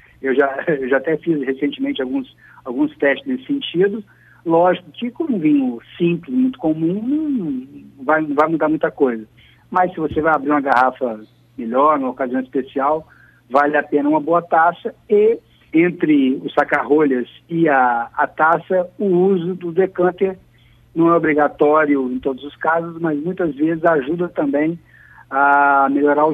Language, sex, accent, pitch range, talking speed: Portuguese, male, Brazilian, 130-175 Hz, 155 wpm